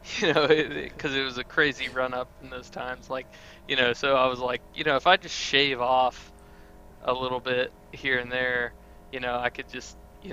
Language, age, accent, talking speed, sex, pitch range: English, 20-39, American, 225 wpm, male, 130-150 Hz